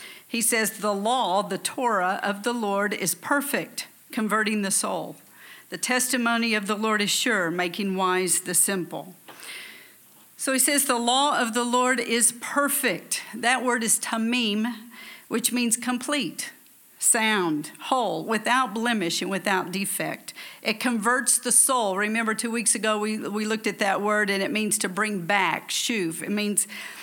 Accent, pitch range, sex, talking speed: American, 200-245 Hz, female, 160 wpm